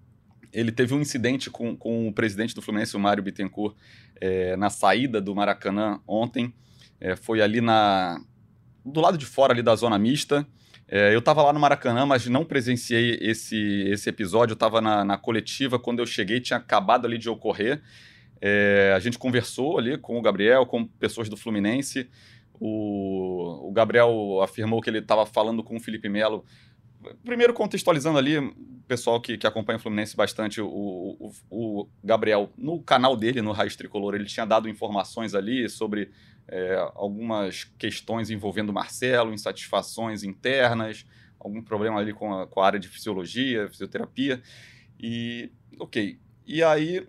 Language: Portuguese